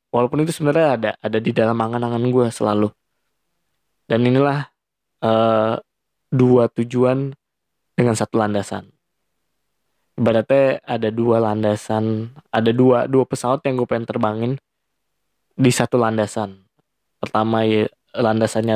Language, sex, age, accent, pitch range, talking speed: Indonesian, male, 20-39, native, 110-130 Hz, 115 wpm